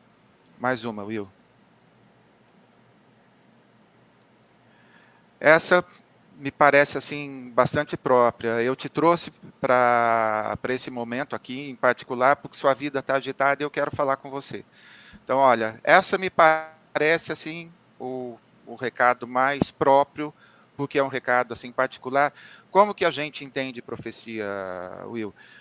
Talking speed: 125 wpm